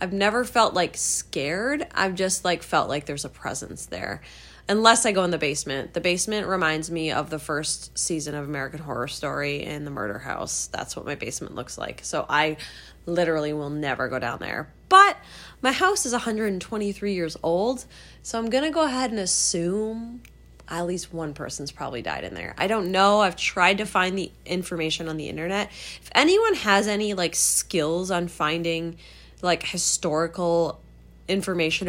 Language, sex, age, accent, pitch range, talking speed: English, female, 20-39, American, 150-200 Hz, 180 wpm